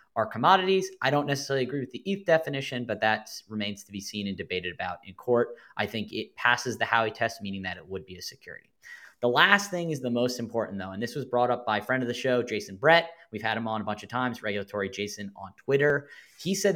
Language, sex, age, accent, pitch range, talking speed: English, male, 20-39, American, 110-150 Hz, 250 wpm